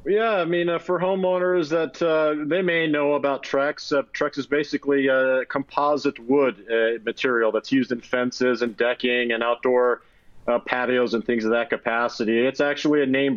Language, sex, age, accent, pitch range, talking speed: English, male, 40-59, American, 125-150 Hz, 185 wpm